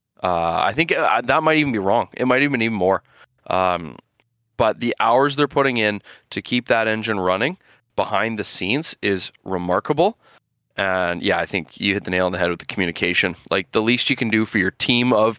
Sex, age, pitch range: male, 20-39, 100-130 Hz